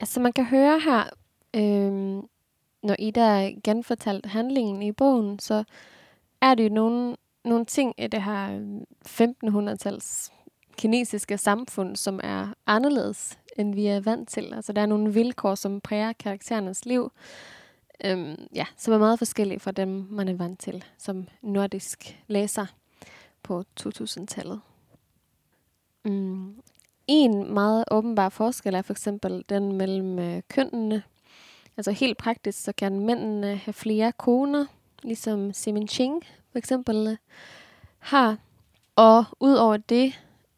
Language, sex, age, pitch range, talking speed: Danish, female, 20-39, 200-230 Hz, 130 wpm